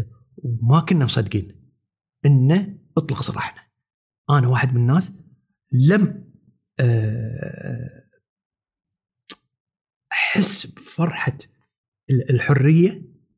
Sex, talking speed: male, 65 wpm